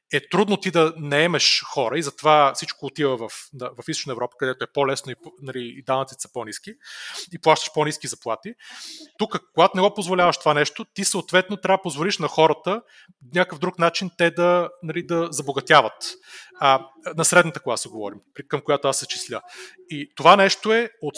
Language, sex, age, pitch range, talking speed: Bulgarian, male, 30-49, 140-185 Hz, 185 wpm